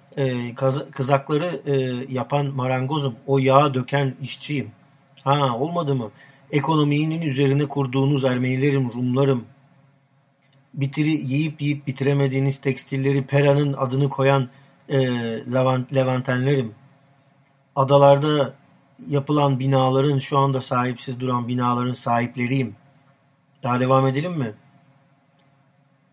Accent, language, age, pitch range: native, Turkish, 40-59, 130-140 Hz